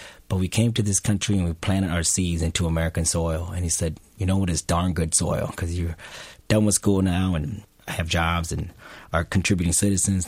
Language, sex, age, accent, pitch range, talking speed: English, male, 30-49, American, 85-110 Hz, 215 wpm